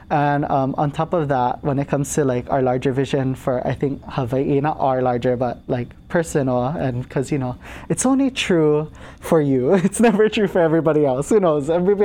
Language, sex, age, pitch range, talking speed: English, male, 20-39, 130-155 Hz, 210 wpm